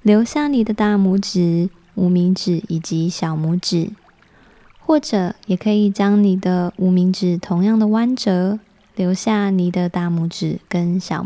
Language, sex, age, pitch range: Chinese, female, 20-39, 185-220 Hz